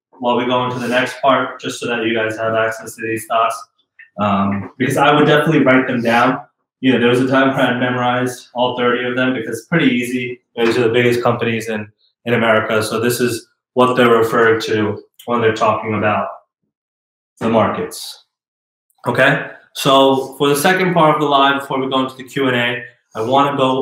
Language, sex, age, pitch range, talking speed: English, male, 20-39, 115-135 Hz, 210 wpm